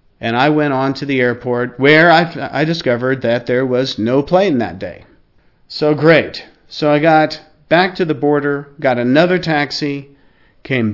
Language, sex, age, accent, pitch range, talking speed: English, male, 40-59, American, 120-145 Hz, 170 wpm